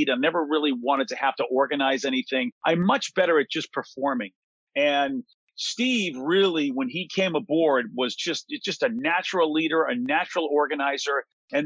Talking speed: 165 wpm